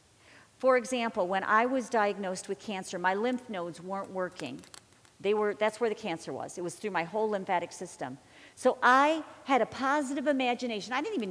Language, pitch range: English, 185-255 Hz